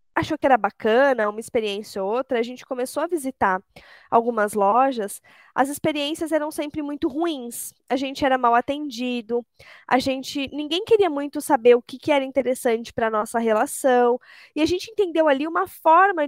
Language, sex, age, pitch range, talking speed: Portuguese, female, 20-39, 245-330 Hz, 175 wpm